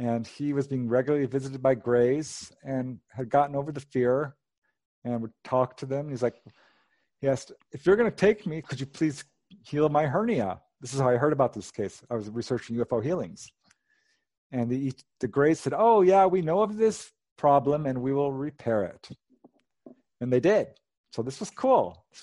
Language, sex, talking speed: English, male, 195 wpm